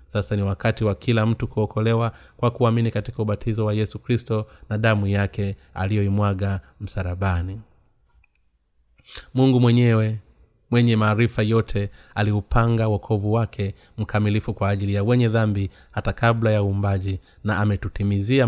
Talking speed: 125 wpm